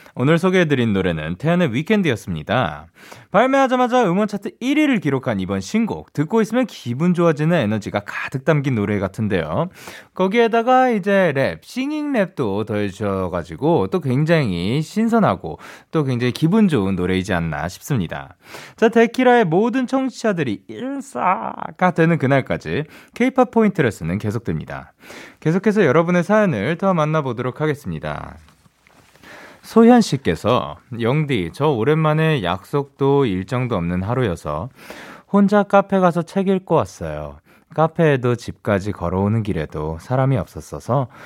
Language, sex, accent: Korean, male, native